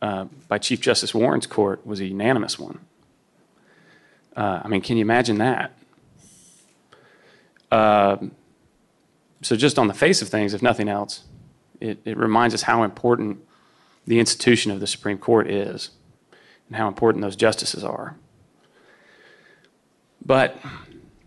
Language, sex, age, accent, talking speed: English, male, 30-49, American, 135 wpm